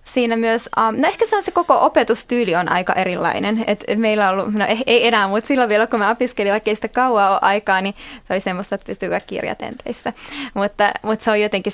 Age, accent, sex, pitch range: 20-39, native, female, 190-220 Hz